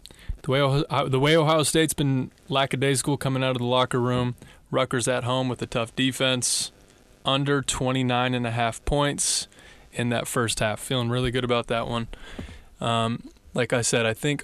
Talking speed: 170 wpm